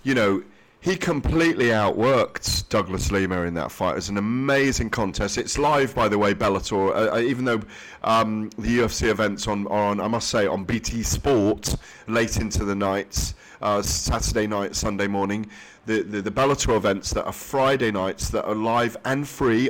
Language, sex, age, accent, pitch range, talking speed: English, male, 40-59, British, 100-125 Hz, 185 wpm